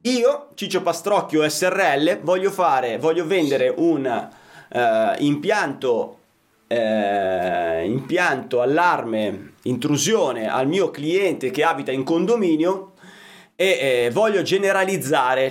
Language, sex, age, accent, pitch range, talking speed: Italian, male, 30-49, native, 135-185 Hz, 100 wpm